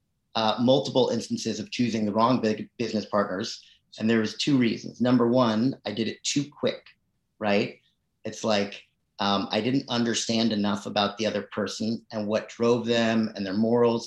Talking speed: 175 wpm